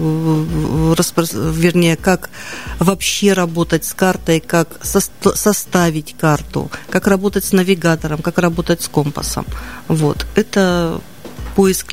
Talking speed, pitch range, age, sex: 100 wpm, 155-190 Hz, 40-59, female